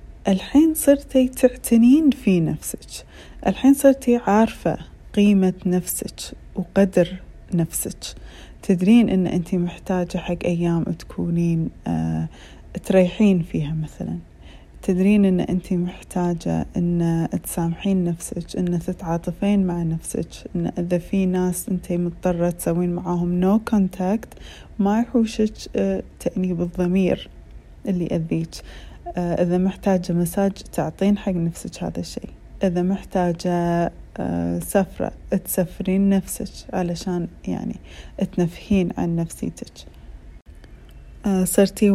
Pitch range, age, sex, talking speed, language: 170-195 Hz, 30-49, female, 95 wpm, Arabic